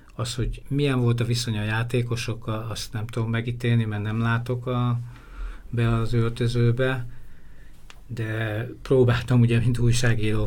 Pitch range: 105-120 Hz